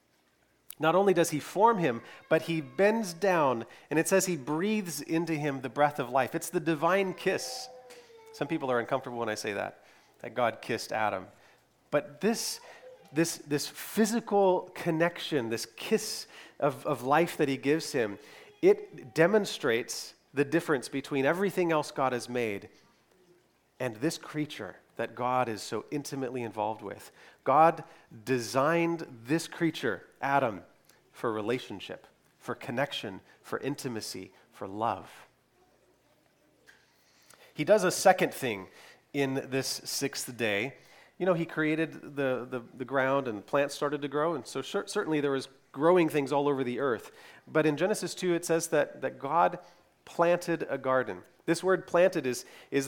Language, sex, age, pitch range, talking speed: English, male, 30-49, 135-170 Hz, 155 wpm